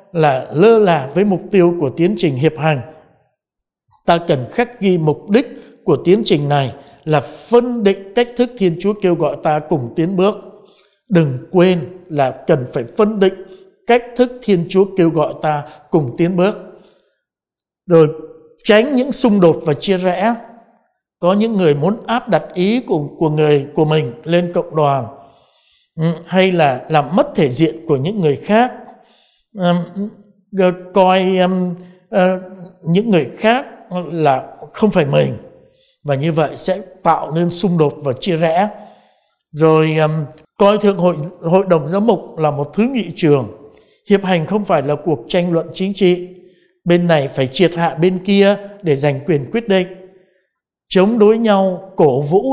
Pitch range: 155-200 Hz